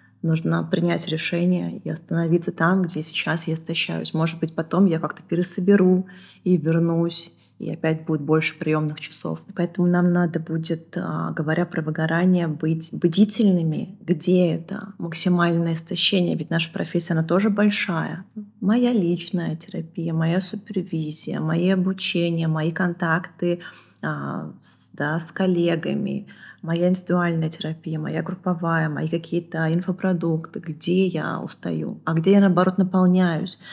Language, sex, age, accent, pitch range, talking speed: Russian, female, 20-39, native, 160-185 Hz, 125 wpm